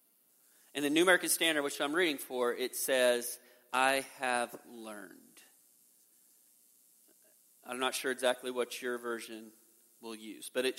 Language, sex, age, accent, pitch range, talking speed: English, male, 40-59, American, 115-155 Hz, 140 wpm